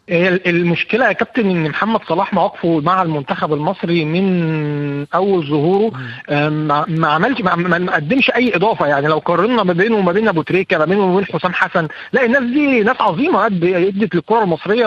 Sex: male